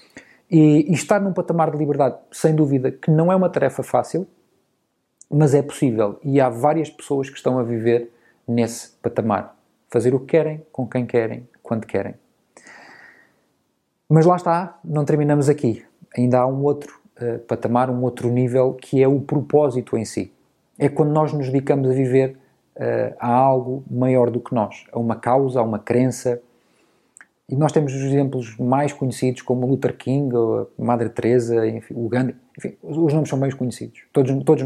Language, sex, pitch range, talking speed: Portuguese, male, 125-155 Hz, 175 wpm